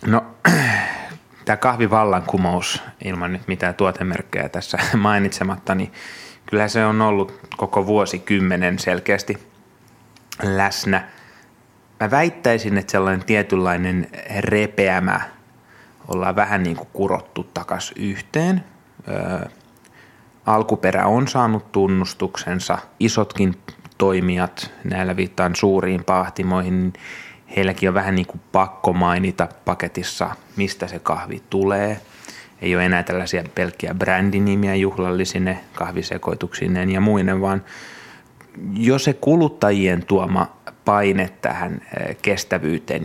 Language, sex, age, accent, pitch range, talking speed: Finnish, male, 20-39, native, 90-110 Hz, 100 wpm